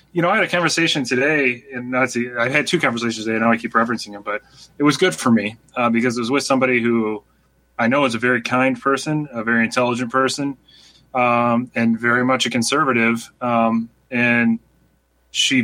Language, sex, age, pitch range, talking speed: English, male, 30-49, 115-135 Hz, 200 wpm